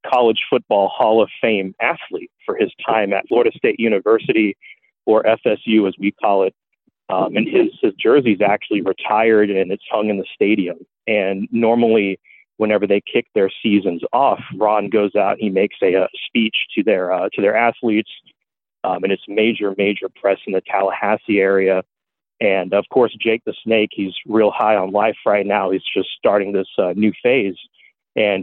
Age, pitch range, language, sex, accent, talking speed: 40-59, 100-110 Hz, English, male, American, 180 wpm